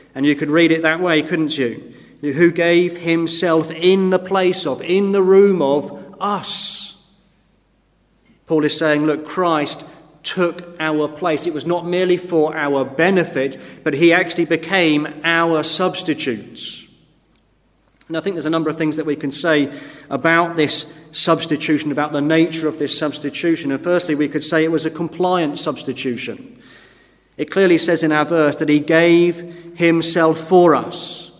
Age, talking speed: 30-49, 160 wpm